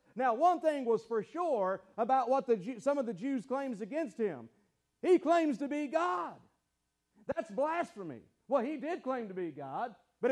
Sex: male